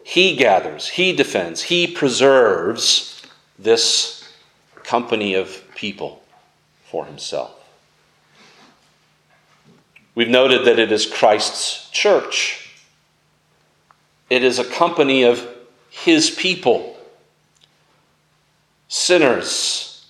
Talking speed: 80 wpm